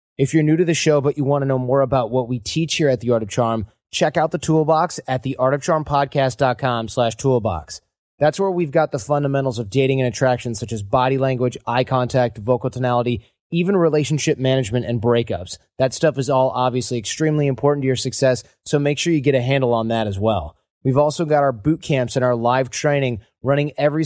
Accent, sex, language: American, male, English